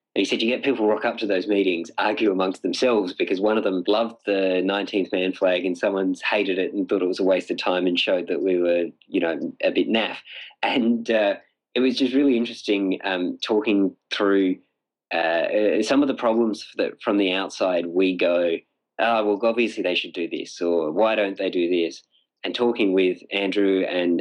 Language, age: English, 20-39